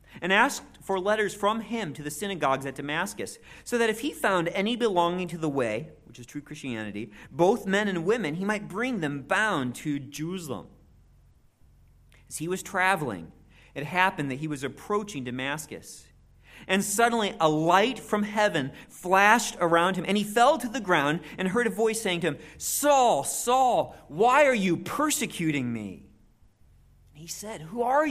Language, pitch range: English, 130-195 Hz